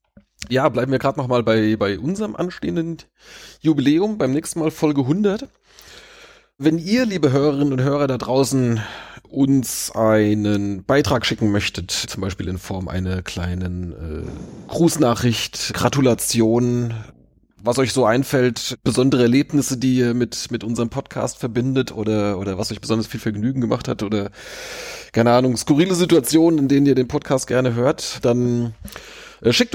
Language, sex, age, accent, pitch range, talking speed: German, male, 30-49, German, 105-135 Hz, 150 wpm